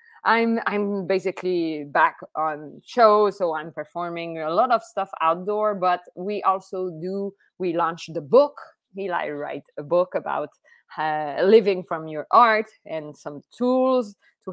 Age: 20-39